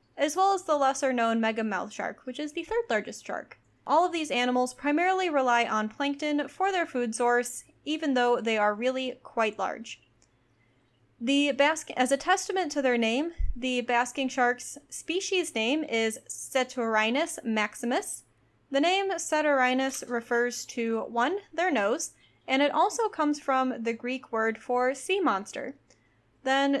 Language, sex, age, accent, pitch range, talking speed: English, female, 10-29, American, 235-310 Hz, 150 wpm